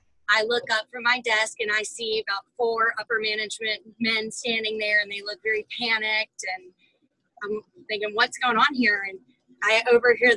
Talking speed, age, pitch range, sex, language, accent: 180 wpm, 30-49, 205-250 Hz, female, English, American